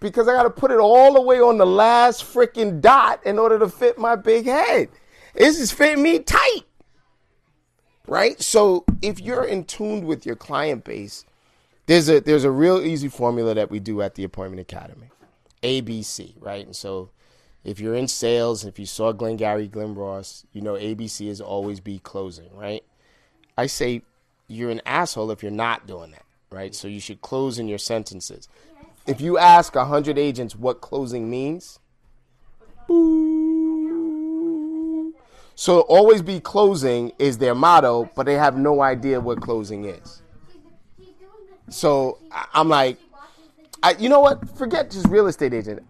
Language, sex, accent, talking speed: English, male, American, 165 wpm